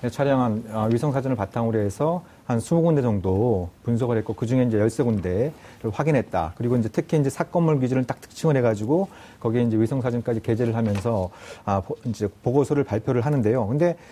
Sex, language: male, Korean